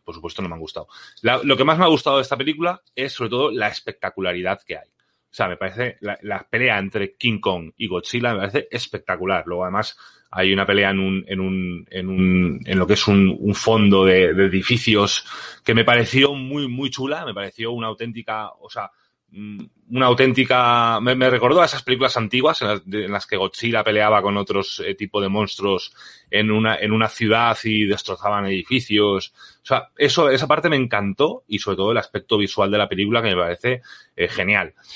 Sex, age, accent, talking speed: male, 30-49, Spanish, 210 wpm